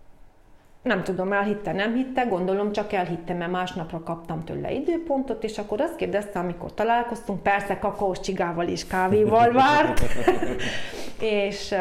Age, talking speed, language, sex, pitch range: 30-49, 130 wpm, Hungarian, female, 175-220 Hz